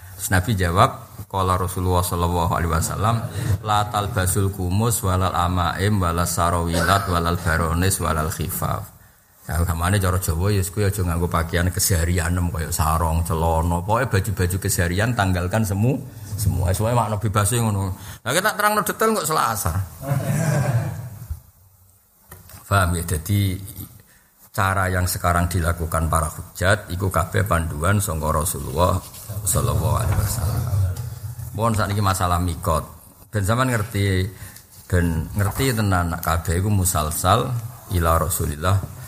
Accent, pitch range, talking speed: native, 90-105 Hz, 125 wpm